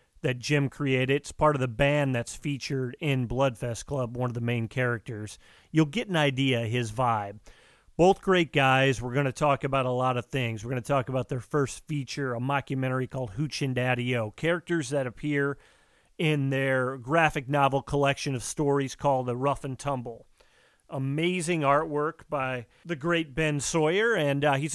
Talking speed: 185 wpm